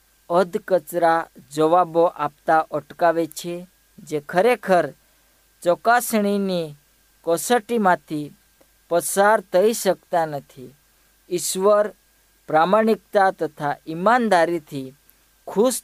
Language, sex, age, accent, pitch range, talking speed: Hindi, female, 50-69, native, 150-200 Hz, 70 wpm